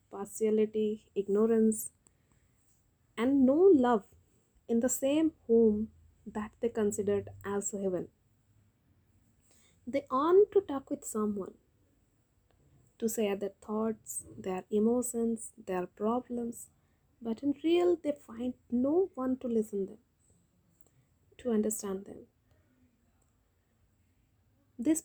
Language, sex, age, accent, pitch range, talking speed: Hindi, female, 20-39, native, 200-255 Hz, 105 wpm